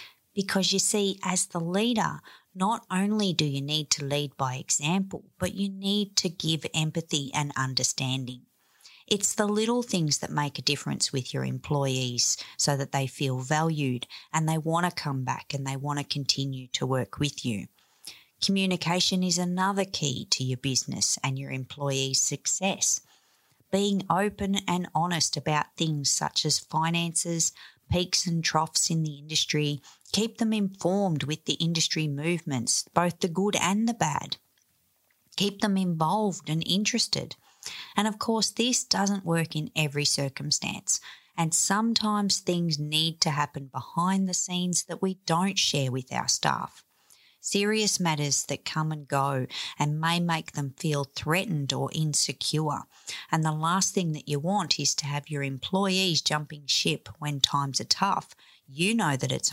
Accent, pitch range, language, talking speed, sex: Australian, 140-185 Hz, English, 160 wpm, female